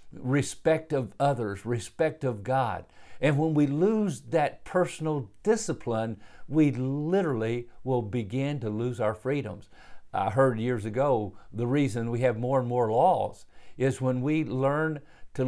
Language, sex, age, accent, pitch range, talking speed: English, male, 50-69, American, 115-155 Hz, 145 wpm